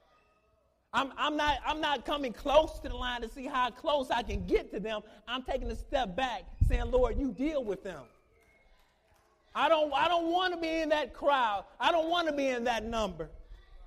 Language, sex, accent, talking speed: English, male, American, 210 wpm